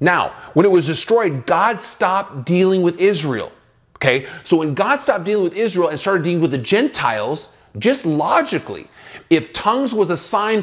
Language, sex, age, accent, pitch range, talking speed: English, male, 30-49, American, 140-190 Hz, 175 wpm